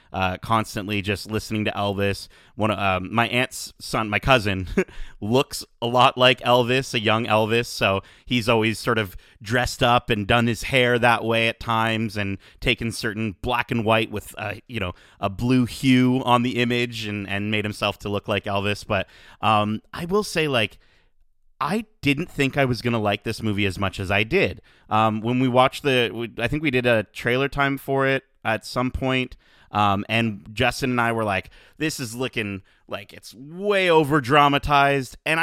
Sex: male